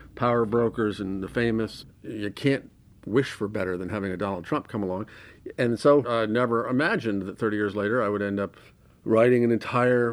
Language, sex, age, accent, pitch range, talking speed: English, male, 50-69, American, 115-145 Hz, 195 wpm